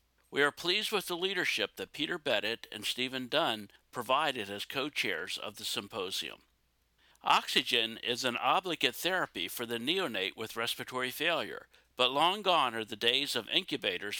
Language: English